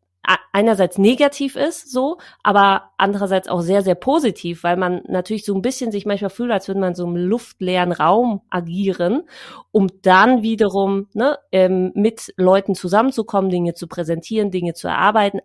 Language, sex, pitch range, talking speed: German, female, 180-220 Hz, 165 wpm